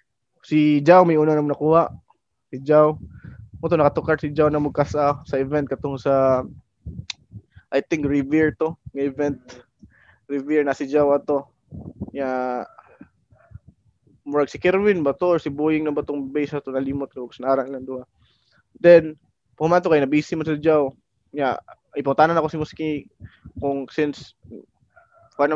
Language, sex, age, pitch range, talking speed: English, male, 20-39, 135-155 Hz, 165 wpm